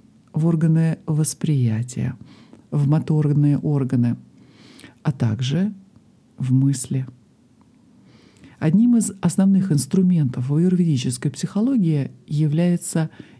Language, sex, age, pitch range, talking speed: Russian, male, 50-69, 130-165 Hz, 80 wpm